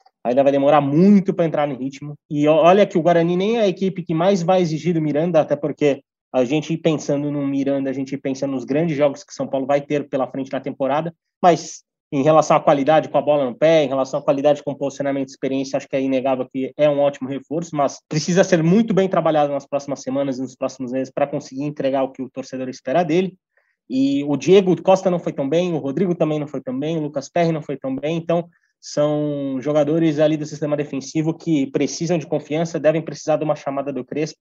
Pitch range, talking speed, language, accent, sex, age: 140-170 Hz, 235 wpm, Portuguese, Brazilian, male, 20-39